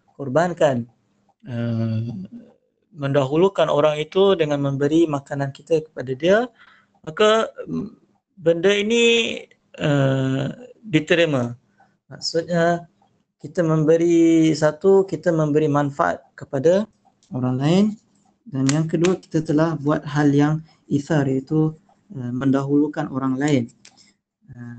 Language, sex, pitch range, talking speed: Malay, male, 135-185 Hz, 100 wpm